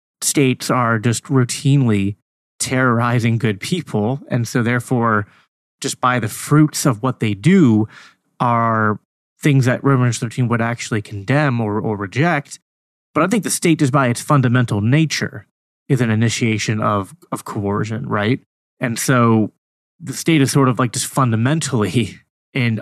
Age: 30-49